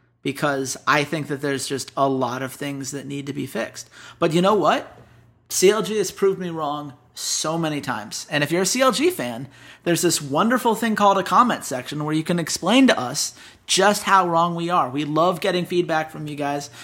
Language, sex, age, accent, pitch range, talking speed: English, male, 30-49, American, 145-185 Hz, 210 wpm